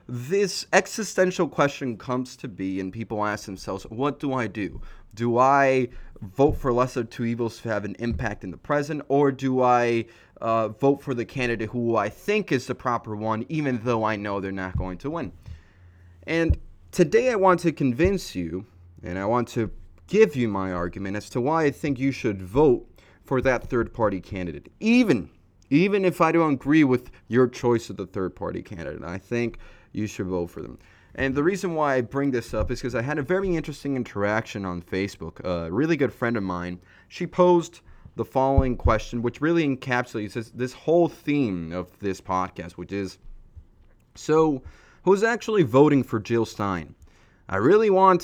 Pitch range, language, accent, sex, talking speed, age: 95-145 Hz, English, American, male, 185 wpm, 30-49